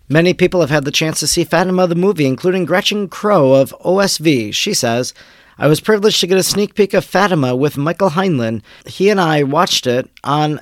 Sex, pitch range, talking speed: male, 140-180 Hz, 210 wpm